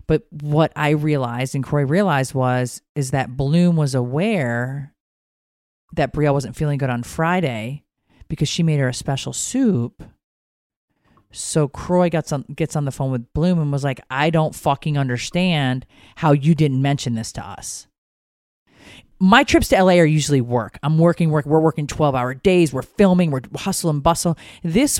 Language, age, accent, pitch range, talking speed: English, 40-59, American, 125-160 Hz, 175 wpm